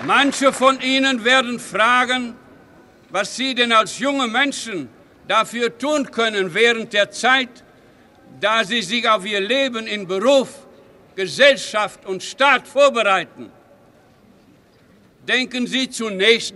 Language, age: German, 60-79